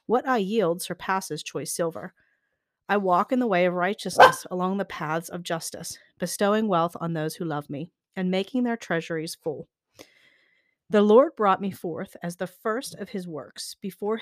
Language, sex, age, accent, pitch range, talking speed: English, female, 40-59, American, 165-200 Hz, 175 wpm